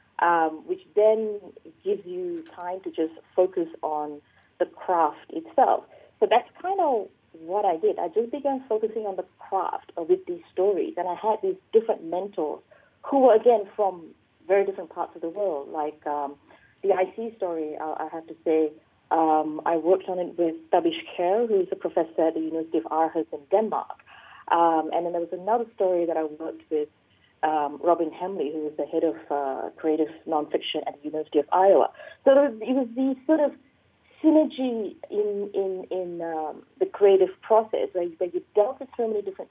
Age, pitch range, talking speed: 30-49, 160-235 Hz, 195 wpm